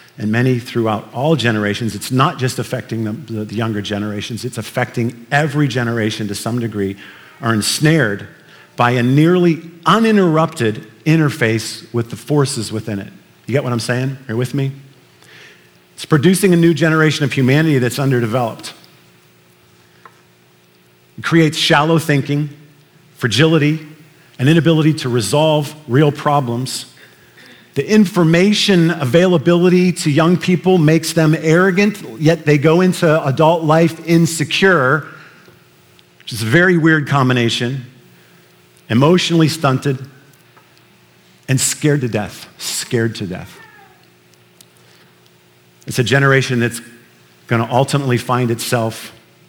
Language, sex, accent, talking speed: English, male, American, 120 wpm